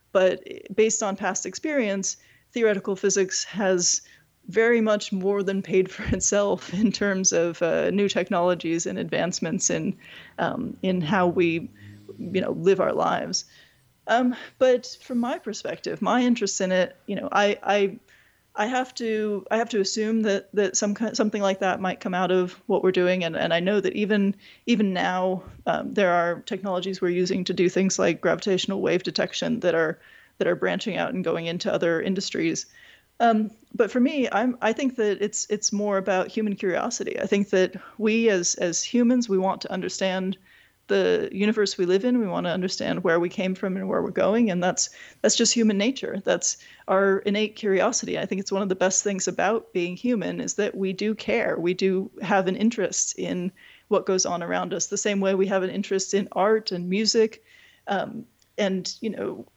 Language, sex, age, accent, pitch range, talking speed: English, female, 30-49, American, 185-220 Hz, 195 wpm